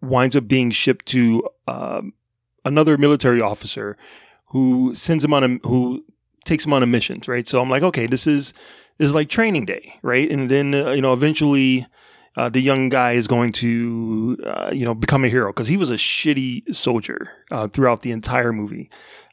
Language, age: English, 30-49